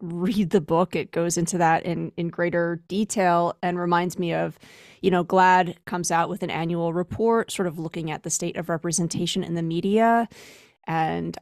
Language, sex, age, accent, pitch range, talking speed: English, female, 30-49, American, 170-200 Hz, 190 wpm